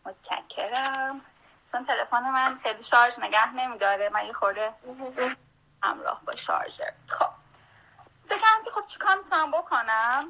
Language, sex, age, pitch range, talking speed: Persian, female, 10-29, 235-320 Hz, 130 wpm